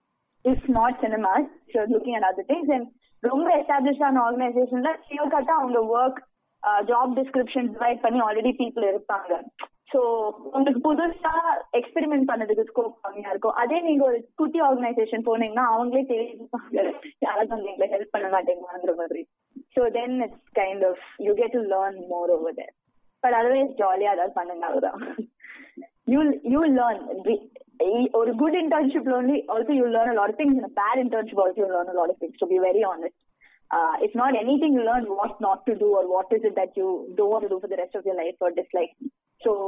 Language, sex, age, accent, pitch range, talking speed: Tamil, female, 20-39, native, 200-270 Hz, 185 wpm